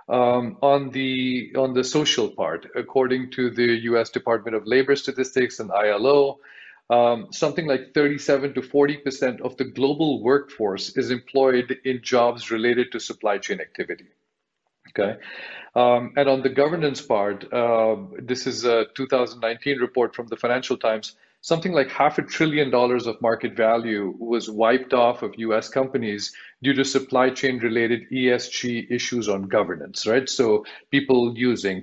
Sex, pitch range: male, 120-140 Hz